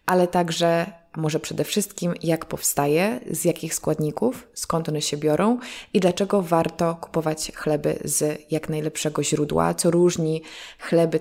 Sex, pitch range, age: female, 155-180 Hz, 20-39